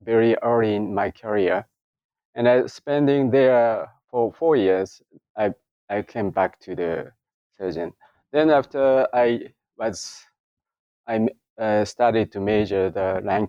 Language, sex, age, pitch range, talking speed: English, male, 30-49, 100-130 Hz, 135 wpm